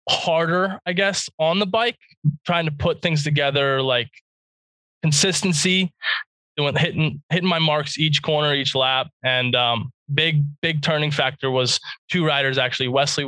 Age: 20-39